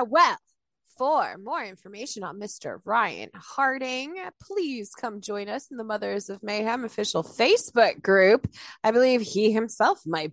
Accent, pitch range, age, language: American, 210-280 Hz, 20-39, English